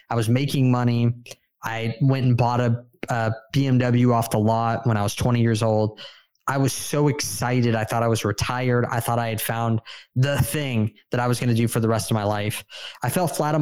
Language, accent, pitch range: English, American, 115-130 Hz